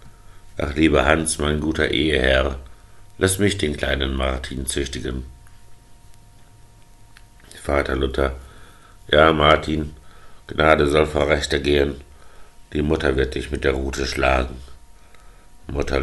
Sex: male